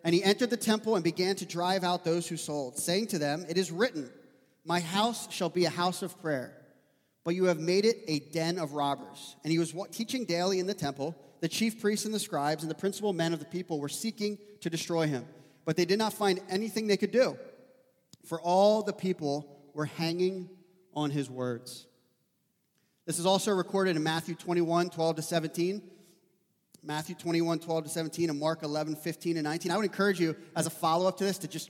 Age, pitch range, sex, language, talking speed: 30-49, 155-190 Hz, male, English, 210 wpm